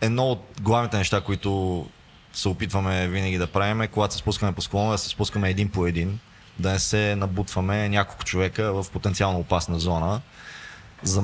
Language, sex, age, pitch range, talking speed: Bulgarian, male, 20-39, 95-110 Hz, 175 wpm